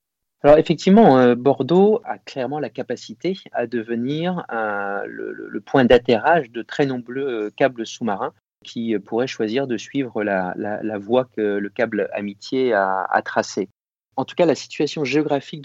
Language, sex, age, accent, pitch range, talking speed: French, male, 40-59, French, 110-140 Hz, 150 wpm